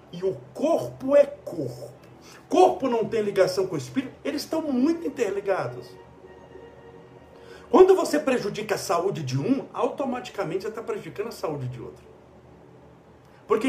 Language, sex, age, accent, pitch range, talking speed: Portuguese, male, 60-79, Brazilian, 185-280 Hz, 140 wpm